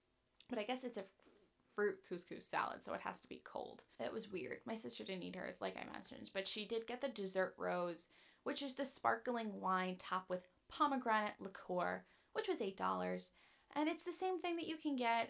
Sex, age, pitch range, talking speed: female, 10-29, 195-255 Hz, 210 wpm